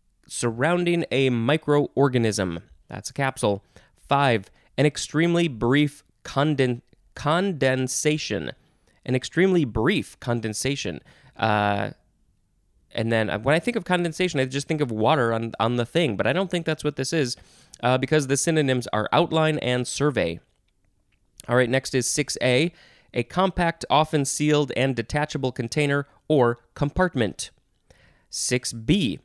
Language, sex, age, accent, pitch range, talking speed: English, male, 20-39, American, 115-150 Hz, 135 wpm